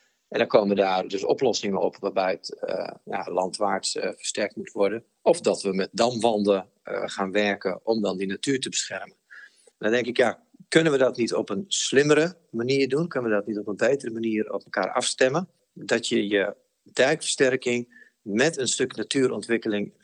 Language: Dutch